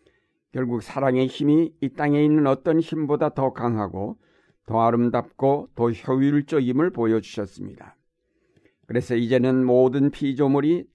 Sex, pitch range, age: male, 115-140 Hz, 60-79